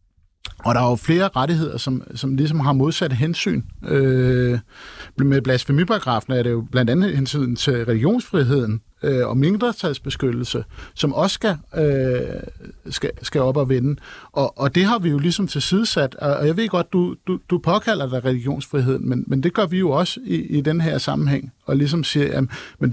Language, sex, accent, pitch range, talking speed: Danish, male, native, 125-175 Hz, 180 wpm